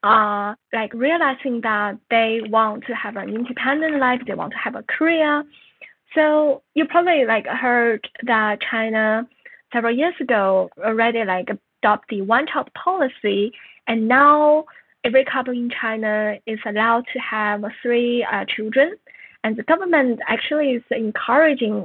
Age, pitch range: 10-29, 215-270 Hz